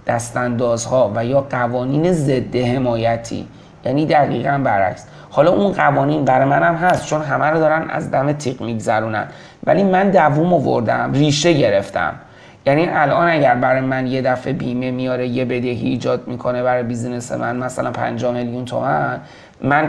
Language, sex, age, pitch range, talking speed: Persian, male, 30-49, 120-140 Hz, 155 wpm